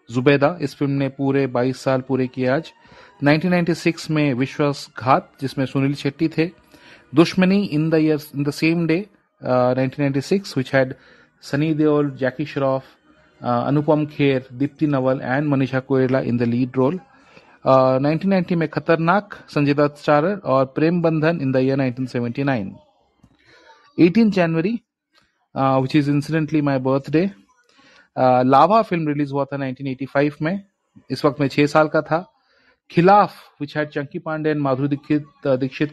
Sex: male